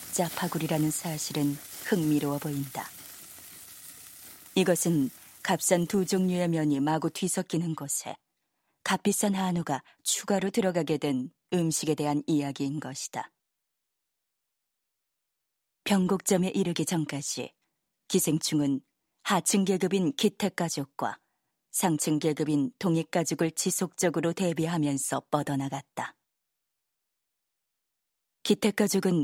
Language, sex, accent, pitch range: Korean, female, native, 150-185 Hz